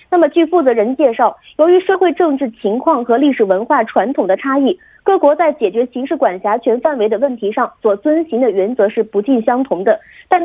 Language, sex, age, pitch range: Korean, female, 30-49, 225-320 Hz